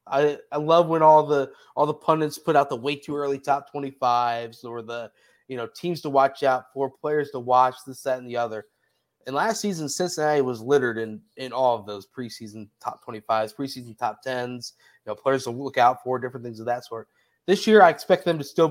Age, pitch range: 20-39, 125-160 Hz